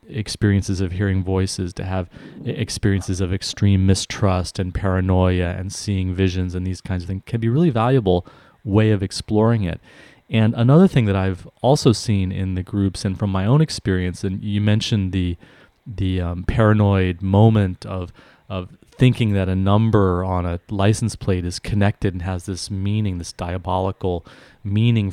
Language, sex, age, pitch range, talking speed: English, male, 30-49, 95-110 Hz, 170 wpm